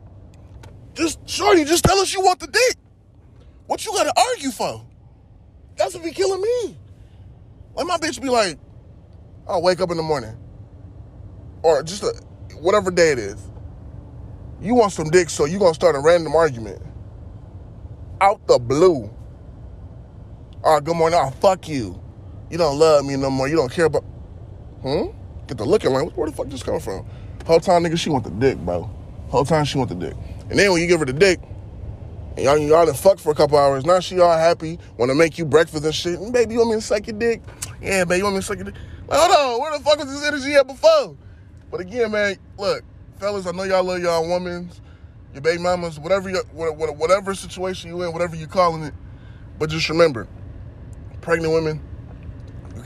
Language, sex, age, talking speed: English, male, 20-39, 205 wpm